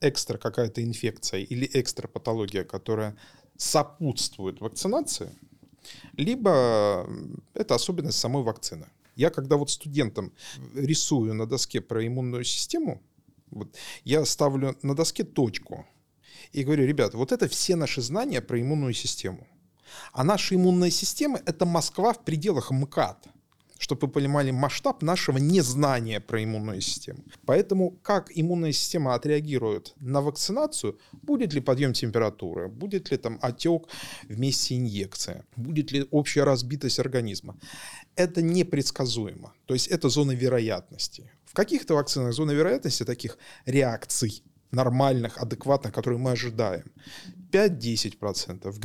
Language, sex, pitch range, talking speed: Russian, male, 120-155 Hz, 125 wpm